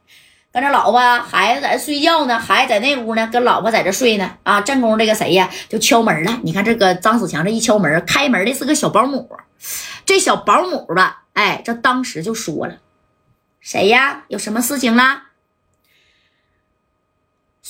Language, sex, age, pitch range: Chinese, female, 20-39, 190-260 Hz